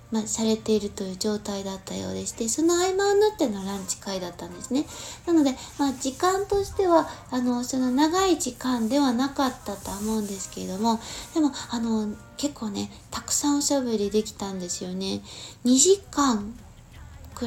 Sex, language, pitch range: female, Japanese, 210-295 Hz